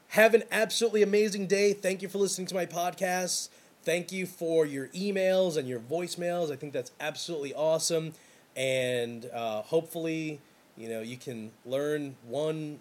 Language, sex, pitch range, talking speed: English, male, 130-180 Hz, 160 wpm